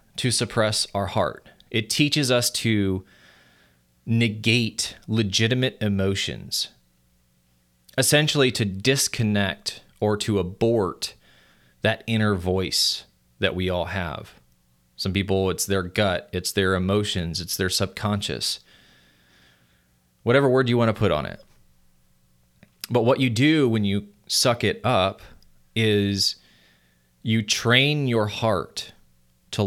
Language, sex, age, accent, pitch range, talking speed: English, male, 20-39, American, 75-110 Hz, 115 wpm